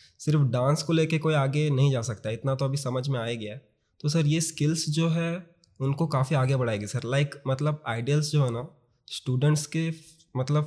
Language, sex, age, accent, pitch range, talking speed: English, male, 20-39, Indian, 125-150 Hz, 195 wpm